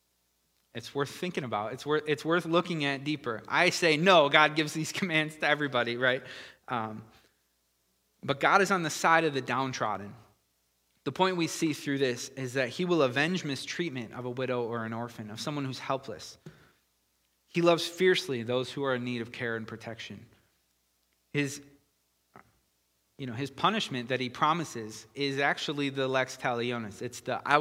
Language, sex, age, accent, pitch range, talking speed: English, male, 20-39, American, 110-140 Hz, 175 wpm